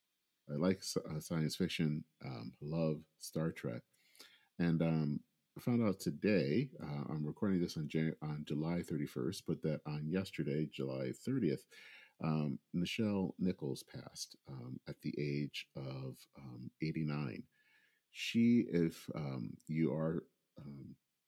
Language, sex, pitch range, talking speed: English, male, 75-85 Hz, 130 wpm